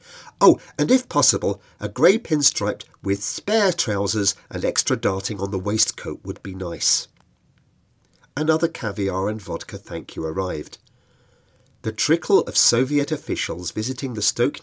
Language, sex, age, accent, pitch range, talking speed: English, male, 40-59, British, 105-155 Hz, 140 wpm